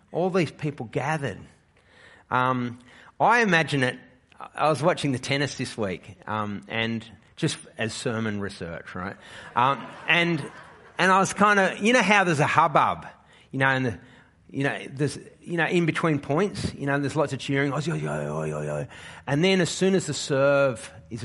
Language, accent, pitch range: English, Australian, 115-160 Hz